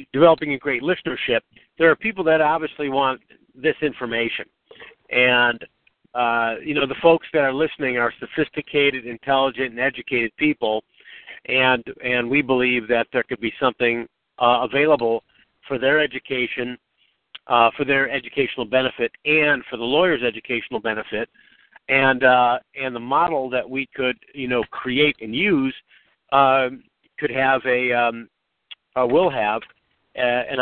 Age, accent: 50-69, American